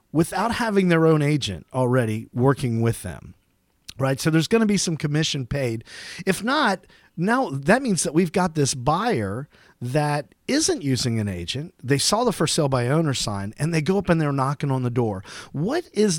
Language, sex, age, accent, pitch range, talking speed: English, male, 40-59, American, 130-195 Hz, 195 wpm